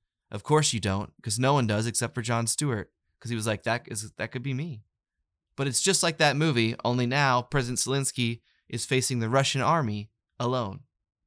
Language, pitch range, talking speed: English, 110-140 Hz, 200 wpm